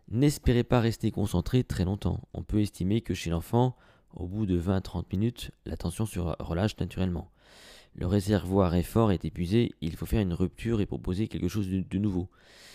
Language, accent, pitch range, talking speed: French, French, 85-115 Hz, 190 wpm